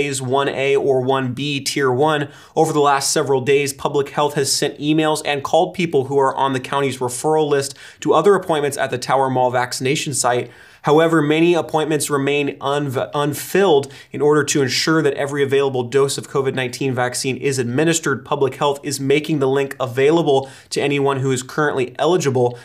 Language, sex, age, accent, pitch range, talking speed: English, male, 30-49, American, 135-155 Hz, 170 wpm